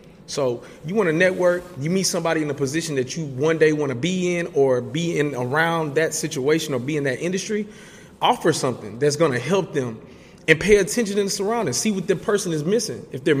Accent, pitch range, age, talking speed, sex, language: American, 130-170 Hz, 20-39, 230 wpm, male, English